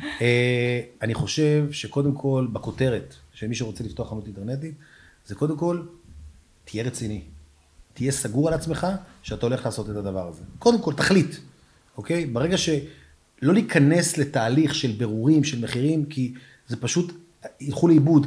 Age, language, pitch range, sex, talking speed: 30-49, Hebrew, 120-170 Hz, male, 145 wpm